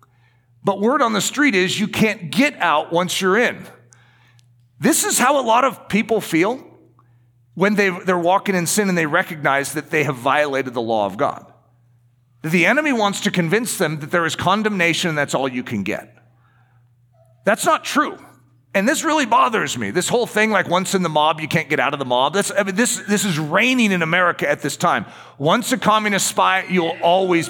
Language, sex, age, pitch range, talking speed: English, male, 40-59, 135-210 Hz, 200 wpm